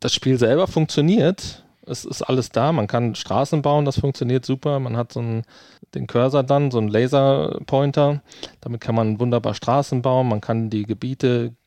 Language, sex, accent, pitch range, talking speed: German, male, German, 110-130 Hz, 180 wpm